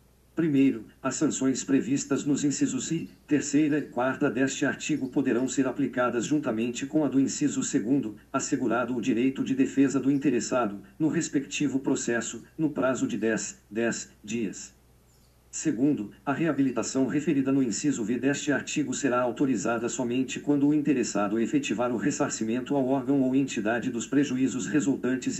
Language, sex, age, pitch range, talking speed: Portuguese, male, 50-69, 125-145 Hz, 145 wpm